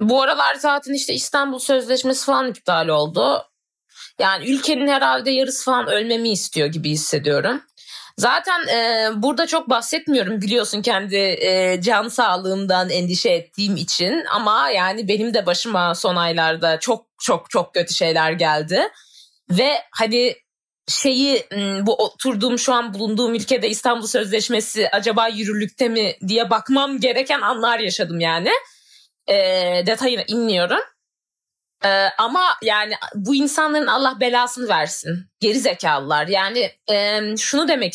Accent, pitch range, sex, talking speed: native, 190-260 Hz, female, 130 wpm